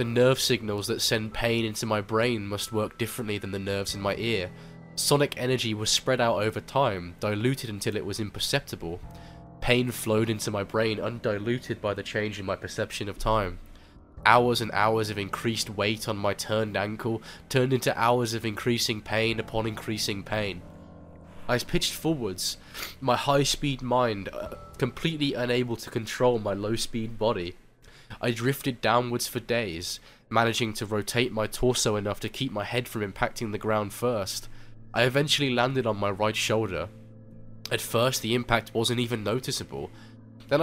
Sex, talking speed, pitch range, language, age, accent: male, 165 wpm, 105-120 Hz, English, 20-39, British